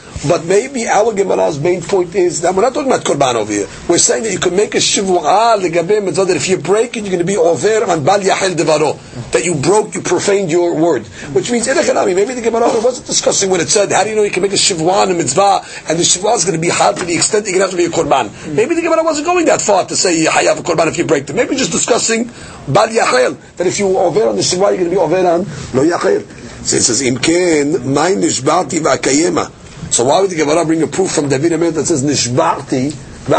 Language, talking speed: English, 245 wpm